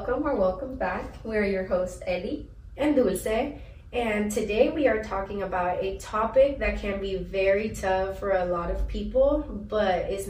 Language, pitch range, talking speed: English, 190-235 Hz, 175 wpm